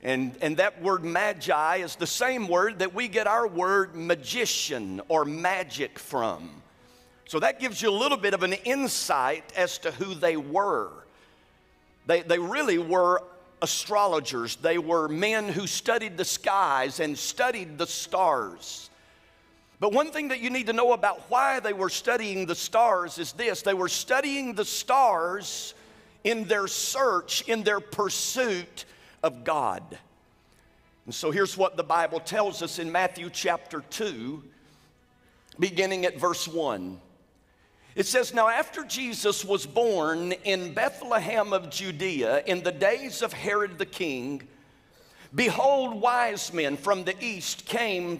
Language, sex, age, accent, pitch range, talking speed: English, male, 50-69, American, 160-215 Hz, 150 wpm